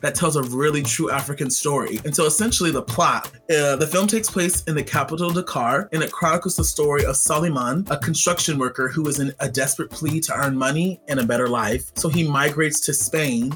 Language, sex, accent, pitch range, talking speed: English, male, American, 130-160 Hz, 220 wpm